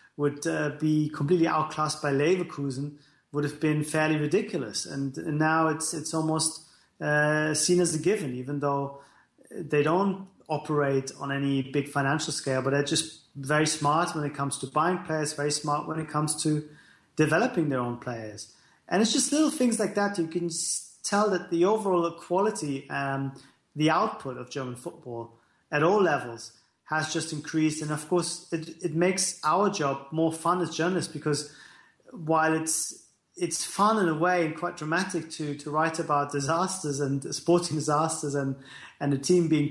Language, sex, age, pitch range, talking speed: English, male, 30-49, 140-165 Hz, 175 wpm